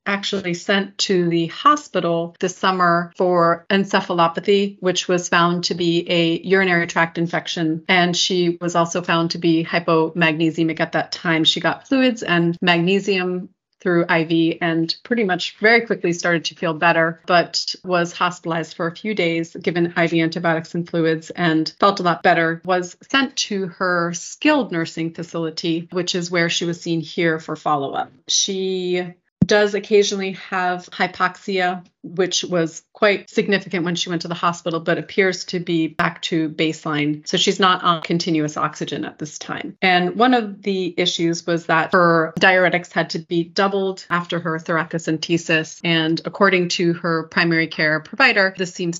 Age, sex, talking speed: 30-49, female, 165 wpm